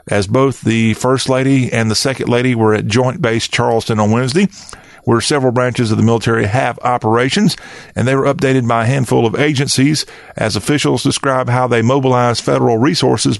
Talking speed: 185 wpm